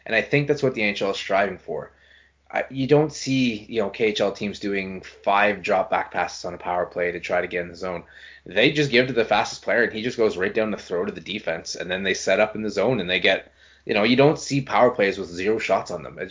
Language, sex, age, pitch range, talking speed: English, male, 20-39, 95-130 Hz, 275 wpm